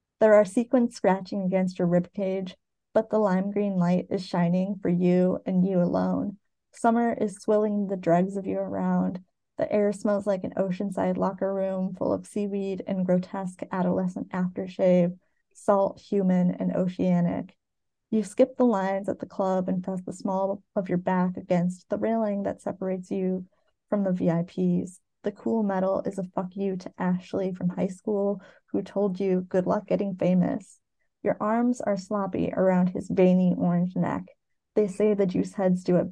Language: English